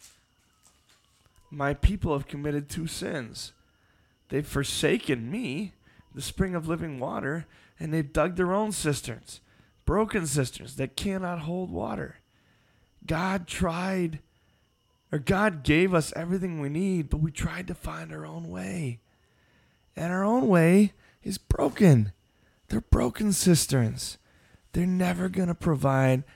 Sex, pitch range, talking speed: male, 120-160 Hz, 130 wpm